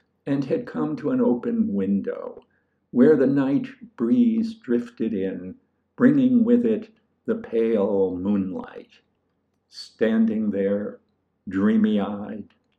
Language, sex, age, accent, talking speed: English, male, 60-79, American, 105 wpm